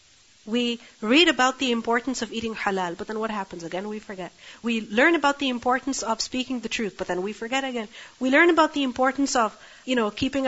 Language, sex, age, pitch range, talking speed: English, female, 40-59, 225-275 Hz, 220 wpm